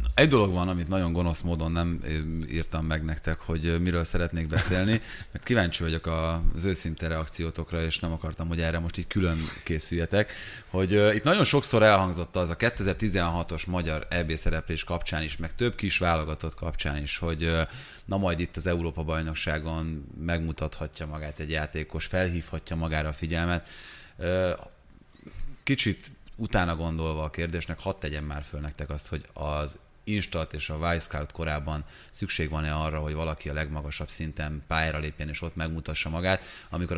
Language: Hungarian